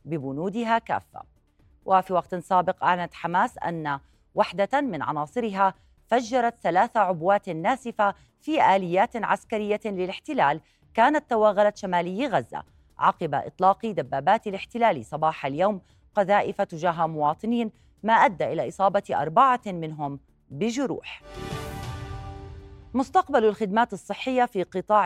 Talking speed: 105 wpm